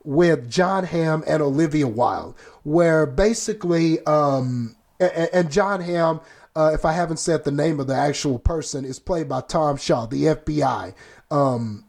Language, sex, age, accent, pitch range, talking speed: English, male, 30-49, American, 140-175 Hz, 160 wpm